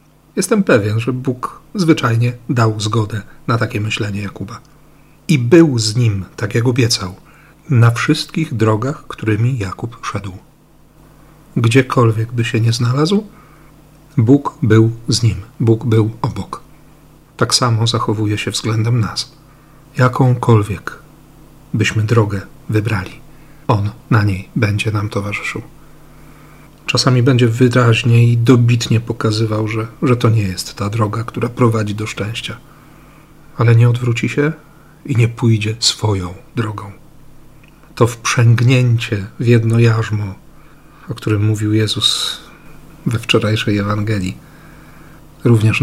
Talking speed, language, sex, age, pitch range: 120 wpm, Polish, male, 40-59, 110-140 Hz